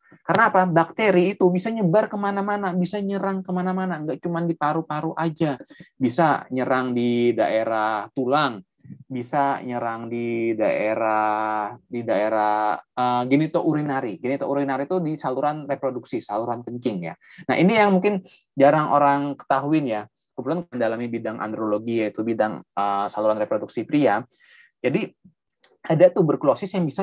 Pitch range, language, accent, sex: 120-175 Hz, Indonesian, native, male